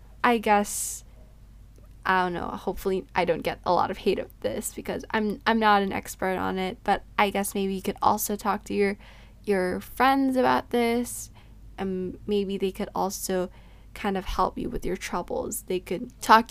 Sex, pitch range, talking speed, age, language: female, 170-210 Hz, 190 wpm, 10-29, English